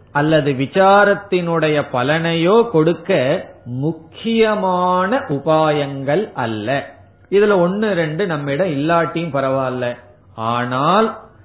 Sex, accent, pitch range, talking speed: male, native, 130-180 Hz, 75 wpm